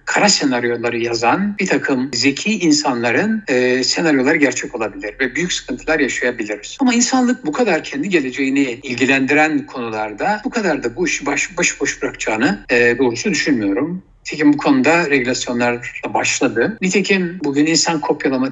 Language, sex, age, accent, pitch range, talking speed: Turkish, male, 60-79, native, 125-190 Hz, 135 wpm